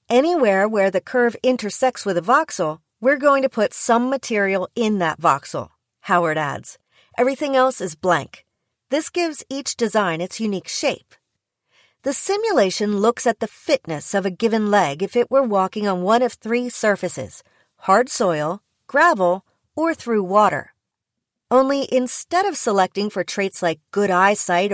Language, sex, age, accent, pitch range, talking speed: English, female, 40-59, American, 190-255 Hz, 155 wpm